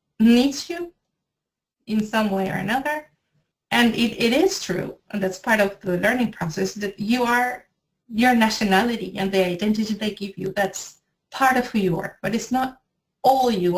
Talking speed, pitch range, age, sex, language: 180 wpm, 185-225 Hz, 30-49, female, English